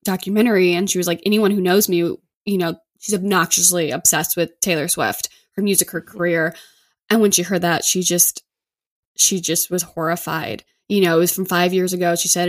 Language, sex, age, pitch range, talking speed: English, female, 10-29, 170-195 Hz, 200 wpm